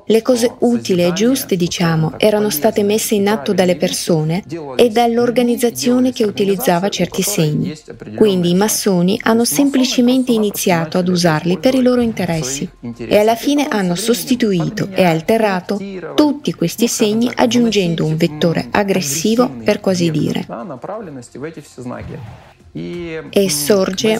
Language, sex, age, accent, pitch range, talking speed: Italian, female, 30-49, native, 175-225 Hz, 125 wpm